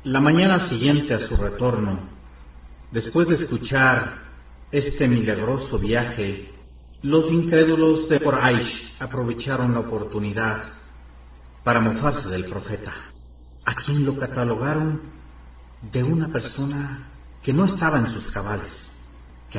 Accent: Mexican